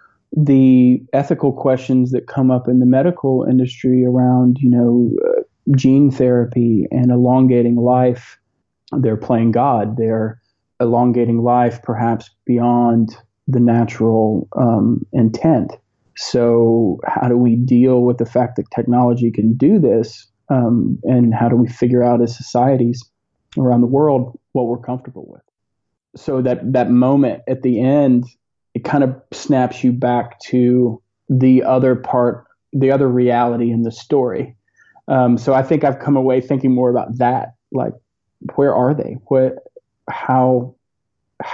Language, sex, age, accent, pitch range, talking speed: English, male, 40-59, American, 120-130 Hz, 145 wpm